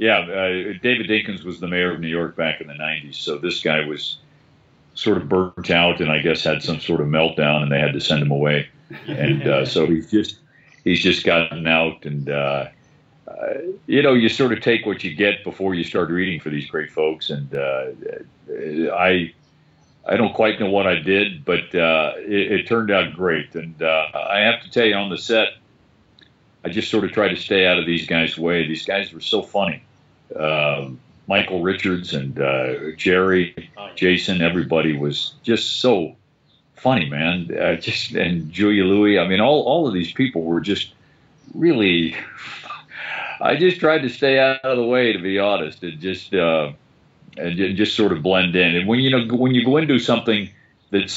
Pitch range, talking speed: 80-110 Hz, 200 wpm